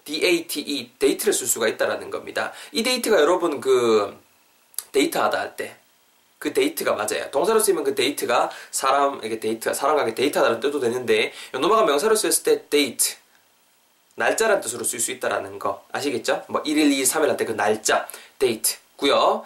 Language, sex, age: Korean, male, 20-39